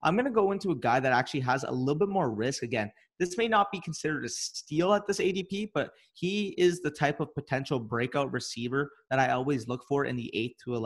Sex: male